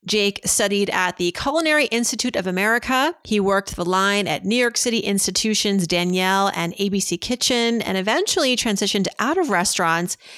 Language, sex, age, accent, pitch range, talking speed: English, female, 30-49, American, 185-235 Hz, 155 wpm